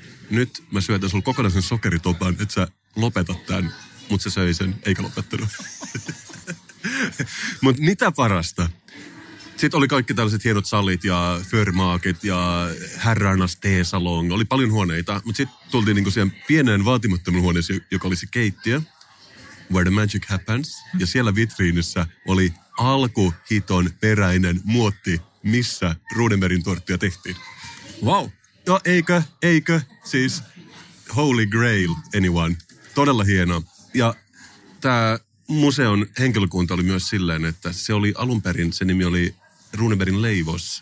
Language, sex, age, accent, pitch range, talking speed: Finnish, male, 30-49, native, 90-120 Hz, 125 wpm